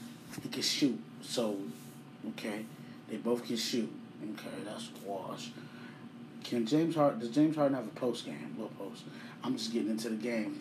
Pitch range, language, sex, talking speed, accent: 115-145 Hz, English, male, 180 wpm, American